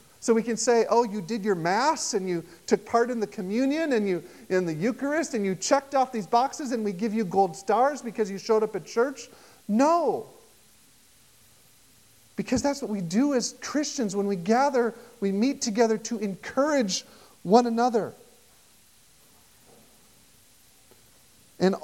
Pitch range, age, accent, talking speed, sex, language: 210-255 Hz, 40-59, American, 160 wpm, male, English